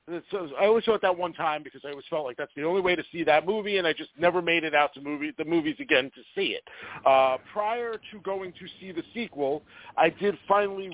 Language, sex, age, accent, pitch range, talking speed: English, male, 40-59, American, 160-245 Hz, 265 wpm